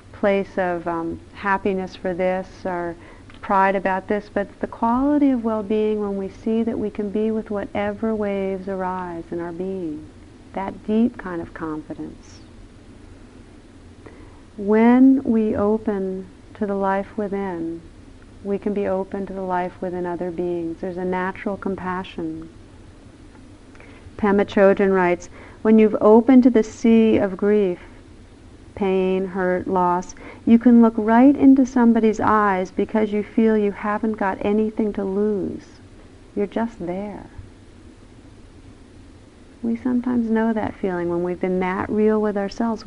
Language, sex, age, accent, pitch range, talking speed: English, female, 50-69, American, 170-215 Hz, 140 wpm